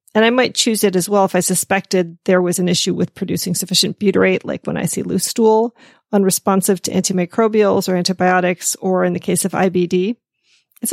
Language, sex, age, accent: English, female, 40-59, American